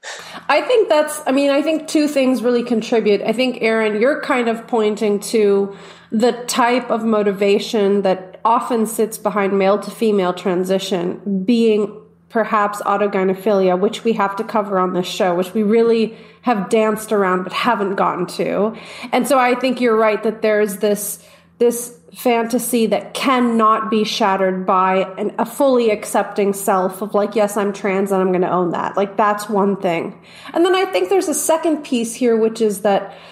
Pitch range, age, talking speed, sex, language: 200-245 Hz, 30-49, 180 wpm, female, English